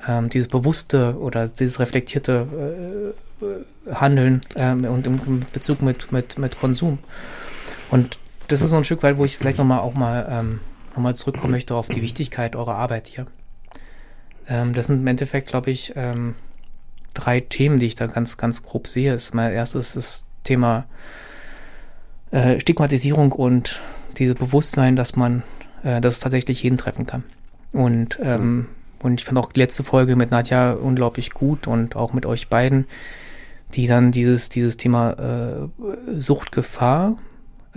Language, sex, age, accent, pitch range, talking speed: German, male, 20-39, German, 125-140 Hz, 160 wpm